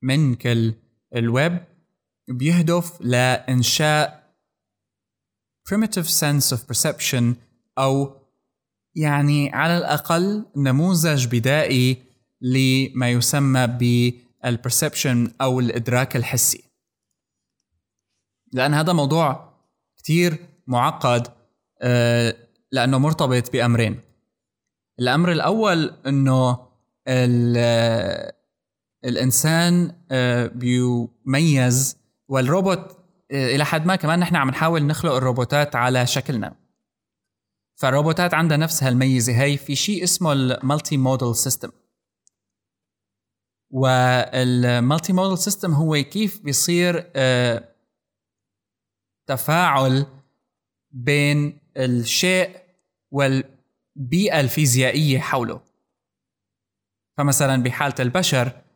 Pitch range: 120-150 Hz